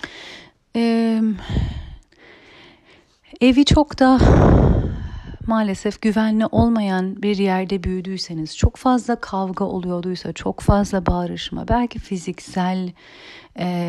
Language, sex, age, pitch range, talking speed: Turkish, female, 40-59, 175-230 Hz, 85 wpm